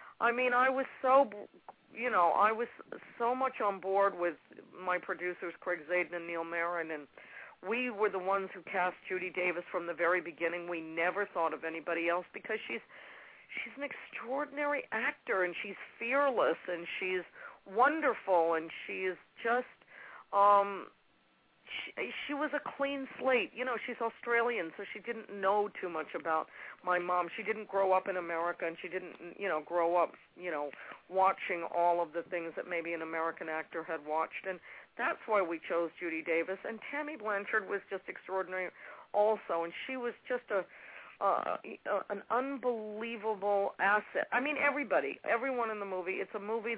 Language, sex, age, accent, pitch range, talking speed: English, female, 50-69, American, 175-230 Hz, 175 wpm